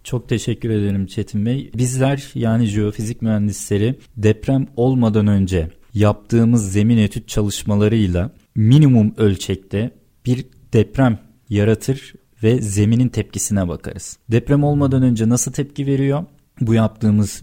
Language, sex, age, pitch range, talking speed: Turkish, male, 40-59, 105-125 Hz, 115 wpm